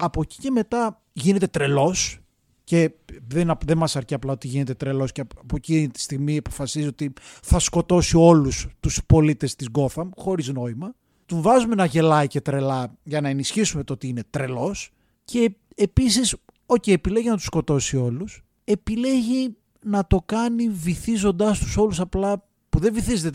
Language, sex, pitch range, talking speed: Greek, male, 140-210 Hz, 160 wpm